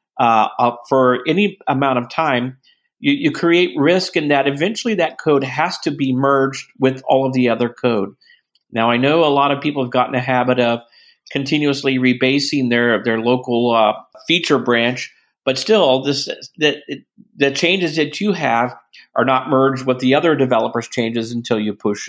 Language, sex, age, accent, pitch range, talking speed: English, male, 50-69, American, 120-145 Hz, 175 wpm